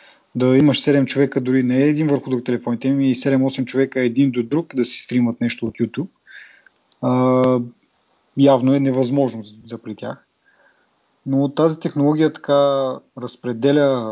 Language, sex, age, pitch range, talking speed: Bulgarian, male, 30-49, 120-145 Hz, 150 wpm